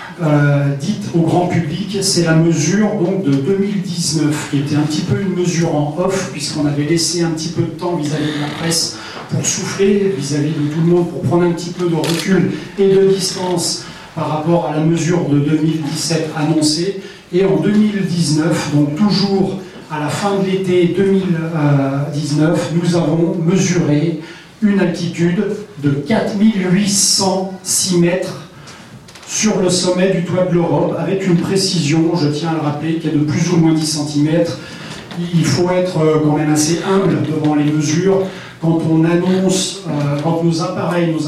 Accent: French